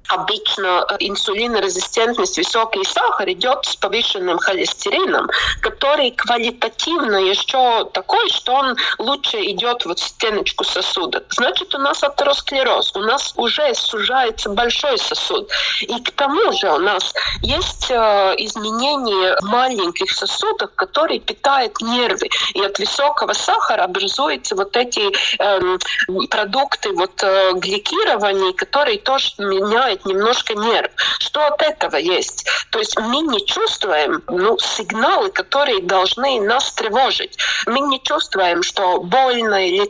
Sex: female